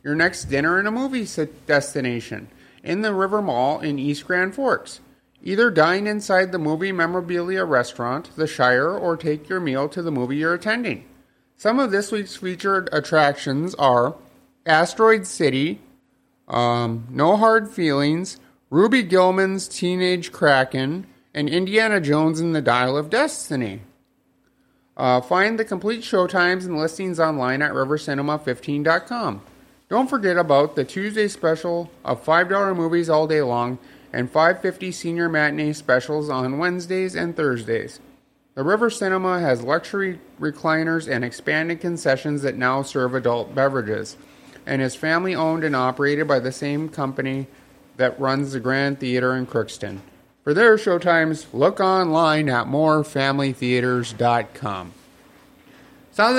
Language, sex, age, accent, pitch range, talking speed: English, male, 30-49, American, 135-190 Hz, 135 wpm